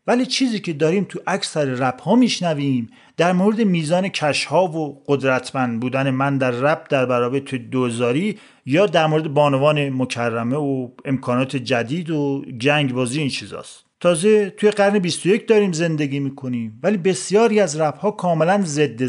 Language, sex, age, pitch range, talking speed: English, male, 40-59, 135-190 Hz, 150 wpm